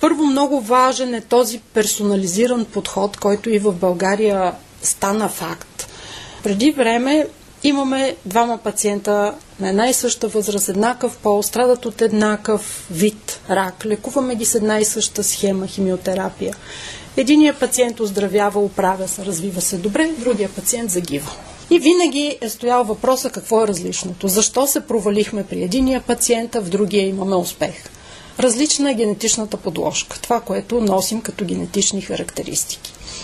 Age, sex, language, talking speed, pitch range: 40-59, female, Bulgarian, 140 wpm, 200-250 Hz